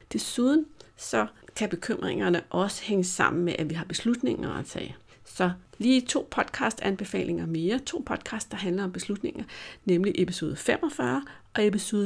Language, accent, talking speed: Danish, native, 150 wpm